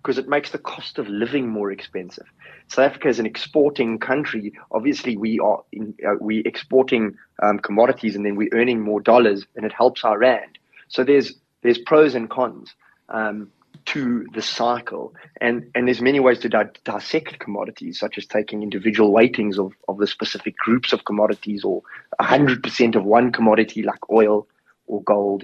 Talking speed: 180 wpm